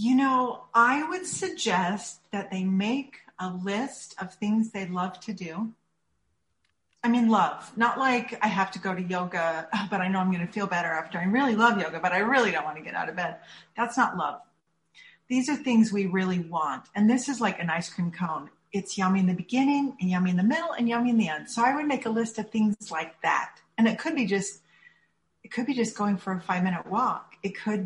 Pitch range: 185-230 Hz